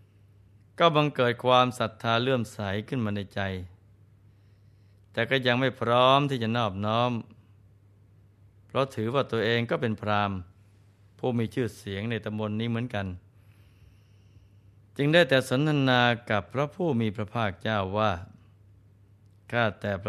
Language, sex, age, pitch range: Thai, male, 20-39, 100-120 Hz